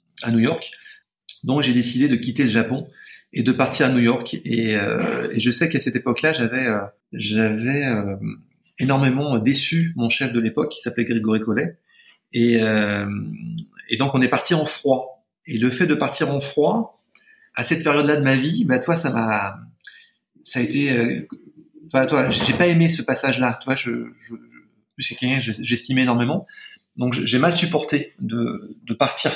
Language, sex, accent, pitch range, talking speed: French, male, French, 115-150 Hz, 190 wpm